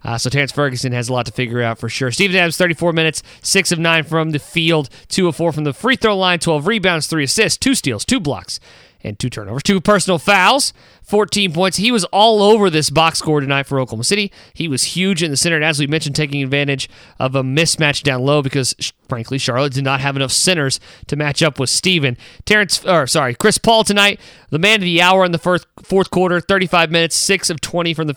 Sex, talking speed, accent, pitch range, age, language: male, 235 wpm, American, 145-195 Hz, 30-49, English